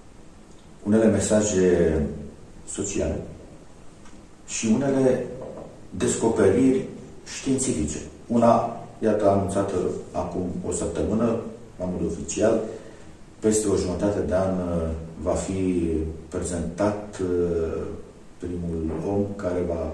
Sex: male